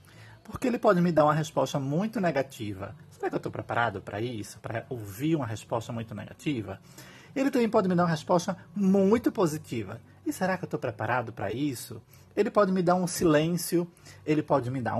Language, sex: Portuguese, male